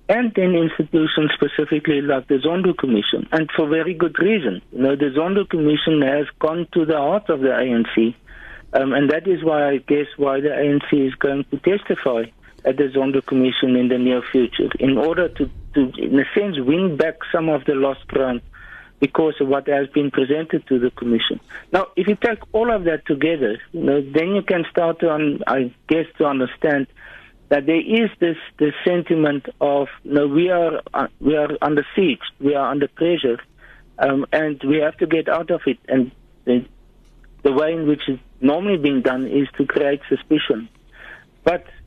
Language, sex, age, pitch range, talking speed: English, male, 50-69, 135-165 Hz, 195 wpm